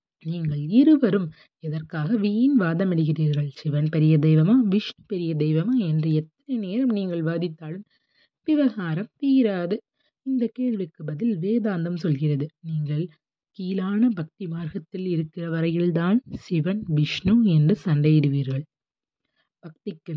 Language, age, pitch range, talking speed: Tamil, 30-49, 155-190 Hz, 105 wpm